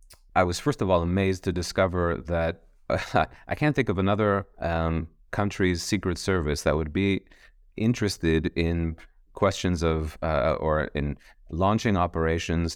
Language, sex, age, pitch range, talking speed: English, male, 30-49, 80-100 Hz, 145 wpm